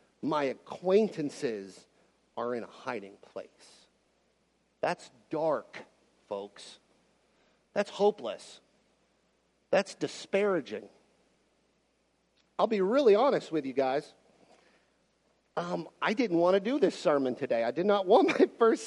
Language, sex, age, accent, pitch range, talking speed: English, male, 50-69, American, 135-210 Hz, 115 wpm